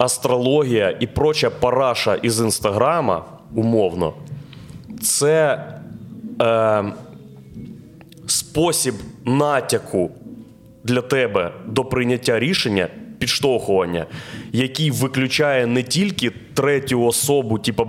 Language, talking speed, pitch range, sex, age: Ukrainian, 80 wpm, 115-145 Hz, male, 20-39